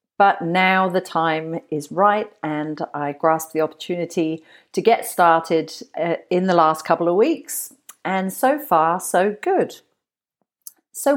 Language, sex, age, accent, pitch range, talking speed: English, female, 40-59, British, 155-195 Hz, 140 wpm